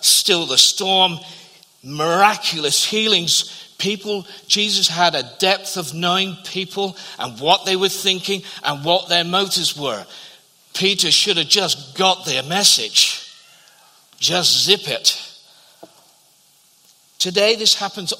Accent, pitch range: British, 160-195 Hz